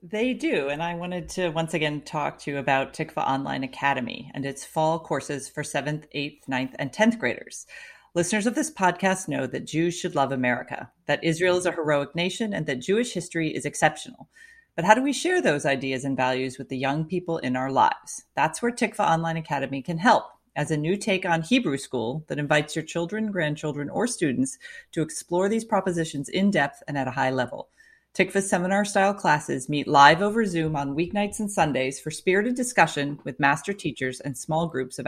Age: 40-59